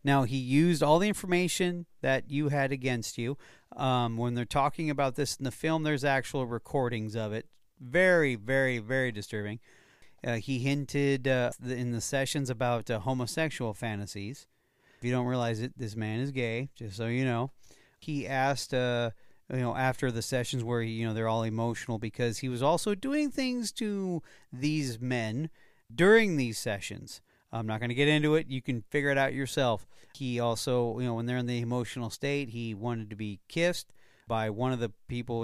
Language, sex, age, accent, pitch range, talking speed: English, male, 40-59, American, 115-140 Hz, 190 wpm